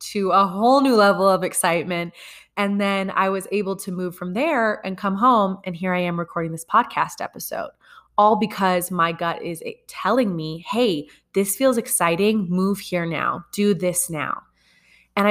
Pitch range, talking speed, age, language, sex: 175-200 Hz, 175 wpm, 20-39, English, female